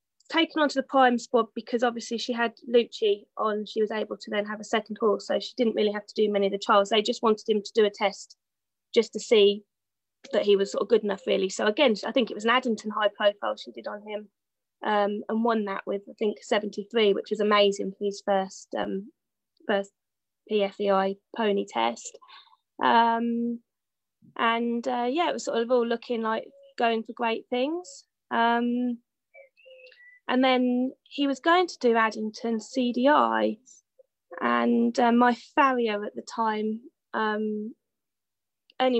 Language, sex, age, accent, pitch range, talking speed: English, female, 20-39, British, 210-255 Hz, 180 wpm